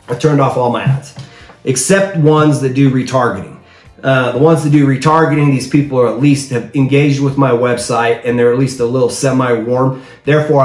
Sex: male